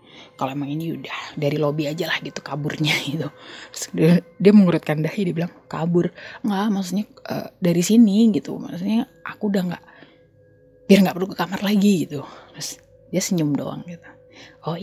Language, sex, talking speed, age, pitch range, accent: Indonesian, female, 165 wpm, 20-39, 160-215 Hz, native